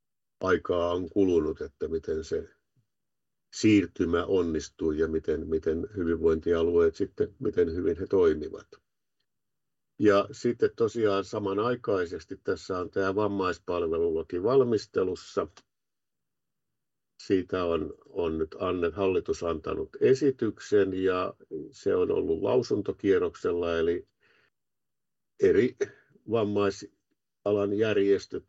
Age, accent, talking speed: 50-69, native, 90 wpm